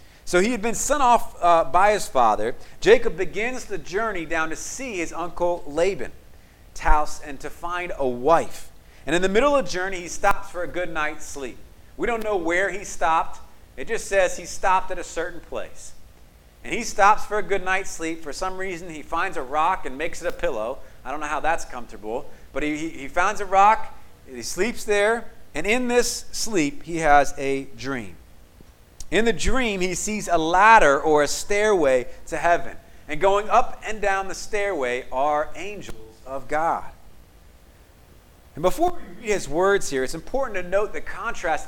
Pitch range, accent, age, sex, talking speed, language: 145-205 Hz, American, 40-59, male, 195 wpm, English